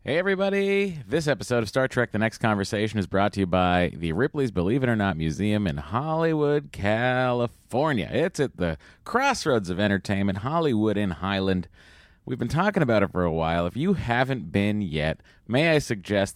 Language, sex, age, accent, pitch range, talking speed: English, male, 30-49, American, 90-145 Hz, 185 wpm